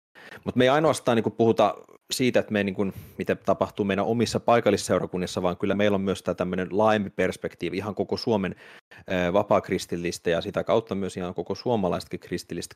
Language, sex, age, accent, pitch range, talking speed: Finnish, male, 30-49, native, 90-105 Hz, 160 wpm